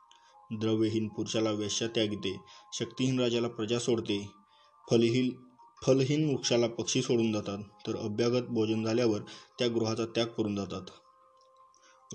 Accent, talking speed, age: native, 125 wpm, 20-39